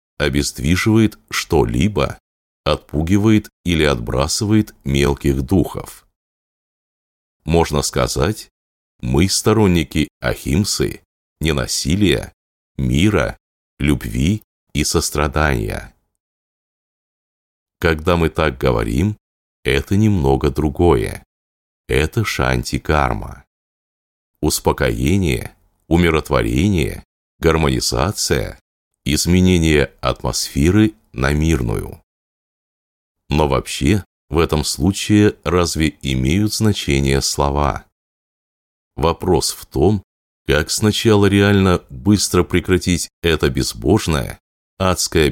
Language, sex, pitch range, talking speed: Russian, male, 70-95 Hz, 70 wpm